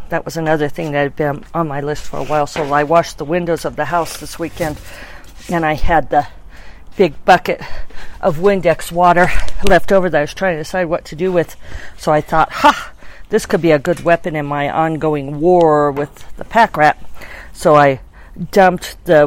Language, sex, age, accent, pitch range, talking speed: English, female, 50-69, American, 150-180 Hz, 205 wpm